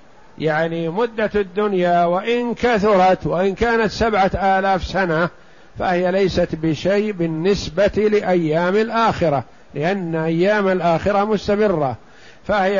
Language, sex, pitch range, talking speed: Arabic, male, 160-200 Hz, 100 wpm